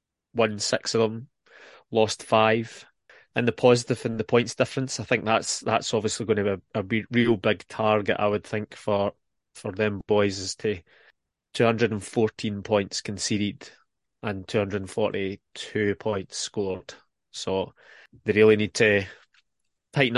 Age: 20-39